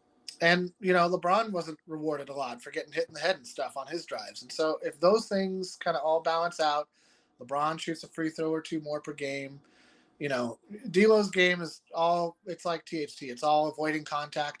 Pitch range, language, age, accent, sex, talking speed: 145-170 Hz, English, 30-49, American, male, 215 wpm